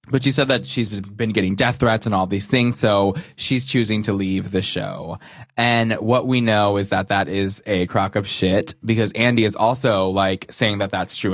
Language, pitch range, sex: English, 95-115 Hz, male